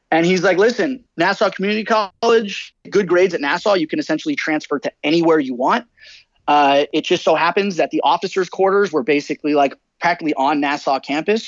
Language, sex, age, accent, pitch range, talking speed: English, male, 30-49, American, 155-205 Hz, 185 wpm